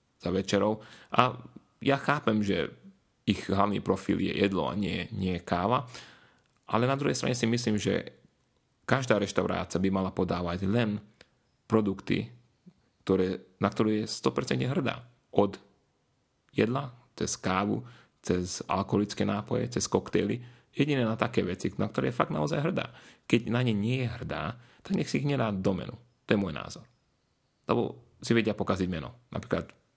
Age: 30-49